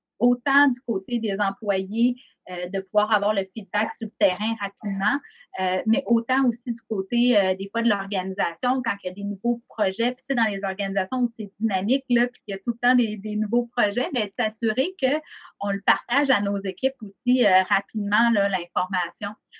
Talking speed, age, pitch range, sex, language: 205 wpm, 30-49, 195-240 Hz, female, French